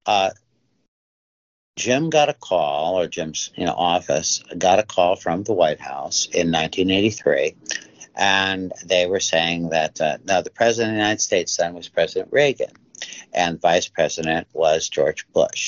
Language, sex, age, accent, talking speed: English, male, 60-79, American, 160 wpm